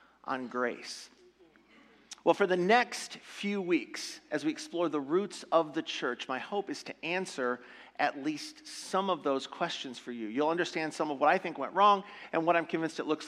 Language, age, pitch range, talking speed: English, 40-59, 145-205 Hz, 200 wpm